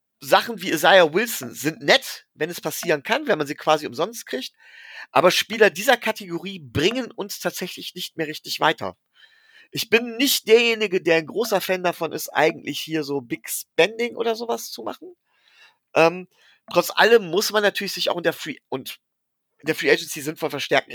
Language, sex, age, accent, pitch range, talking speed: German, male, 40-59, German, 160-225 Hz, 185 wpm